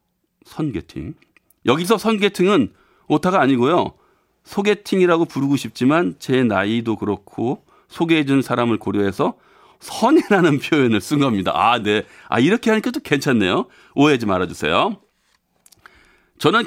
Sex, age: male, 40-59